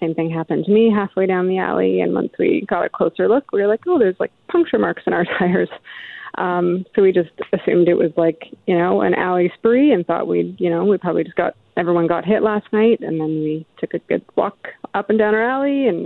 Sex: female